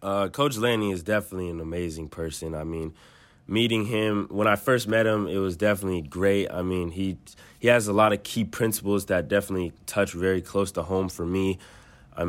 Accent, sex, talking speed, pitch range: American, male, 200 wpm, 85-100 Hz